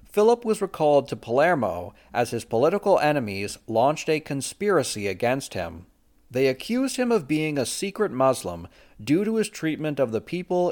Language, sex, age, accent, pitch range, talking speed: English, male, 40-59, American, 100-155 Hz, 160 wpm